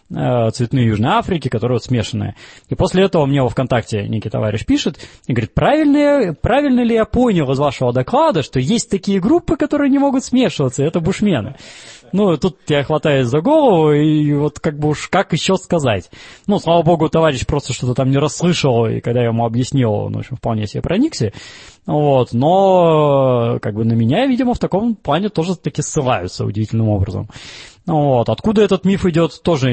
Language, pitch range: Russian, 120-170 Hz